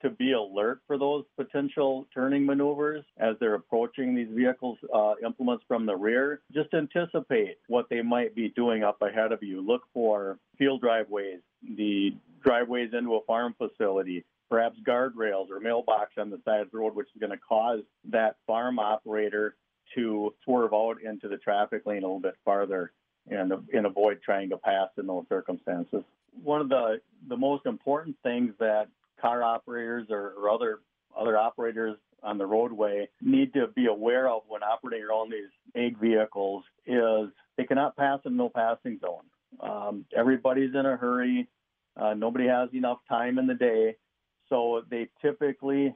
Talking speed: 170 wpm